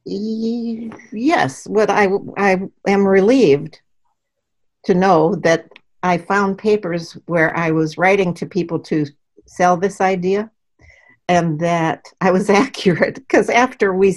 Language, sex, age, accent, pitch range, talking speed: English, female, 60-79, American, 155-200 Hz, 125 wpm